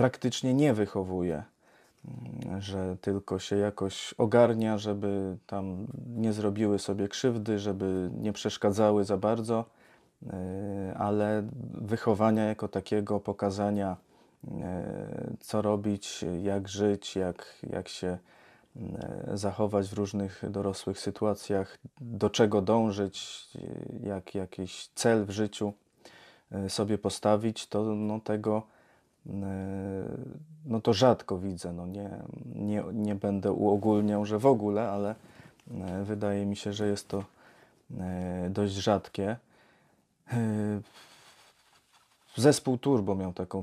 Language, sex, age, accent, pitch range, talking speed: Polish, male, 20-39, native, 95-105 Hz, 105 wpm